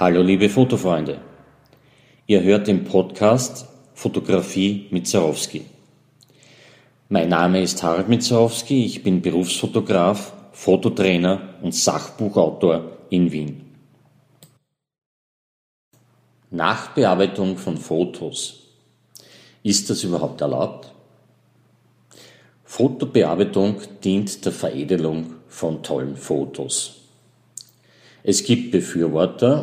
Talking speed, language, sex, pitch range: 80 wpm, German, male, 85-115 Hz